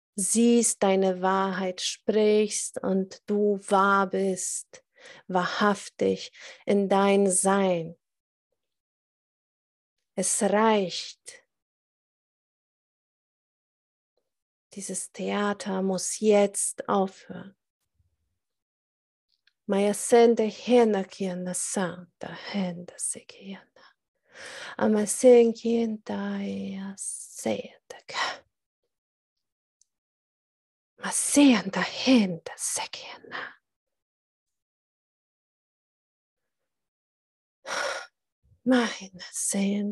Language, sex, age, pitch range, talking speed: German, female, 40-59, 190-225 Hz, 30 wpm